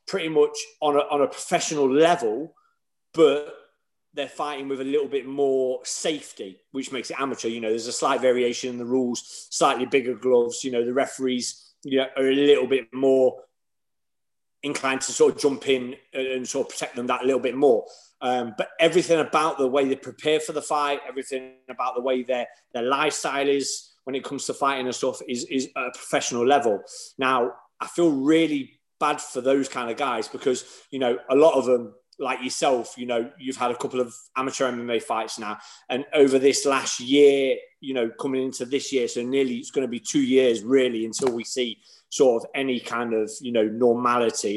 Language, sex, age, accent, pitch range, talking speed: English, male, 30-49, British, 125-150 Hz, 205 wpm